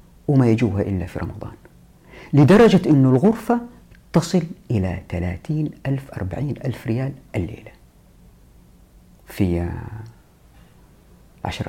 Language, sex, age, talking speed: Arabic, female, 50-69, 85 wpm